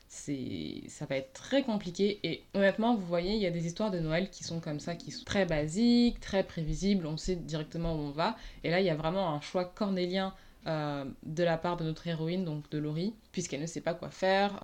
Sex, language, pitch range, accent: female, French, 150-195 Hz, French